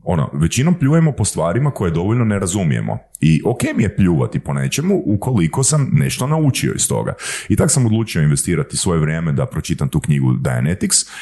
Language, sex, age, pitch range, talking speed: Croatian, male, 30-49, 85-140 Hz, 185 wpm